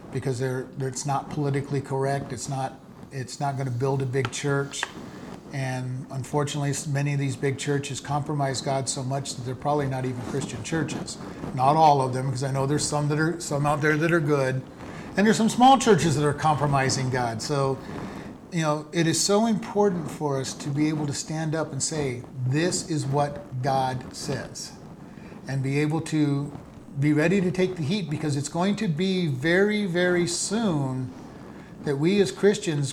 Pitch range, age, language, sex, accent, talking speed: 135-175 Hz, 40-59, English, male, American, 190 wpm